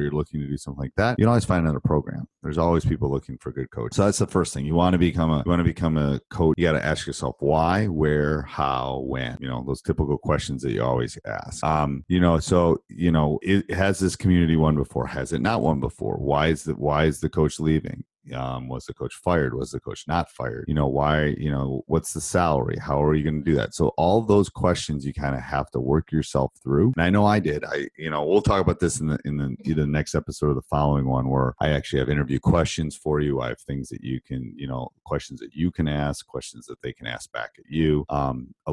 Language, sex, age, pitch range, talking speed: English, male, 30-49, 70-85 Hz, 265 wpm